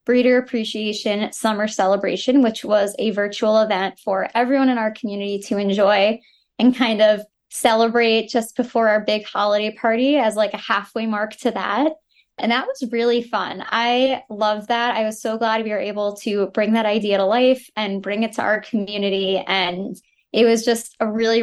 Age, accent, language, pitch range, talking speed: 10-29, American, English, 205-235 Hz, 185 wpm